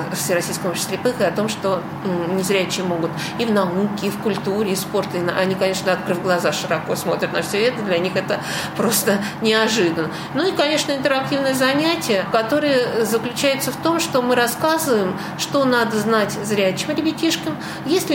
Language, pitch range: Russian, 185-270 Hz